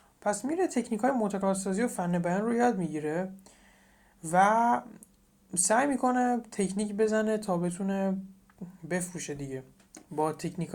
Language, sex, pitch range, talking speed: Persian, male, 165-215 Hz, 125 wpm